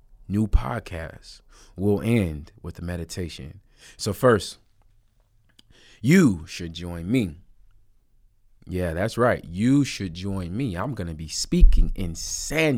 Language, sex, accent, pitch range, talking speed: English, male, American, 85-105 Hz, 120 wpm